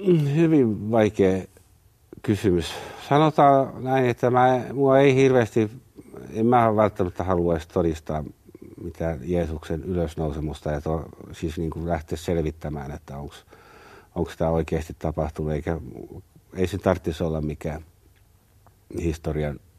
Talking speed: 110 wpm